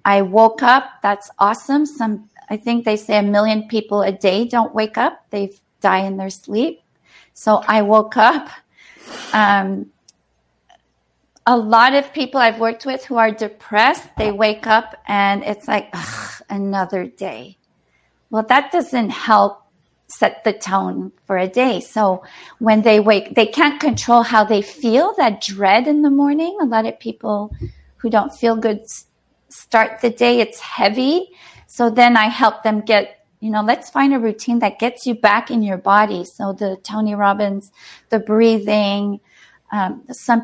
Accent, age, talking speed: American, 40-59, 165 wpm